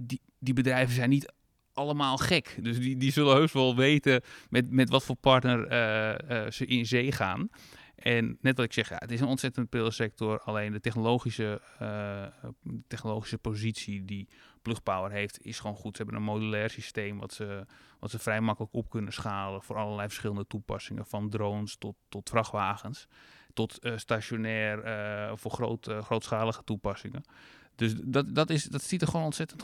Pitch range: 110-135 Hz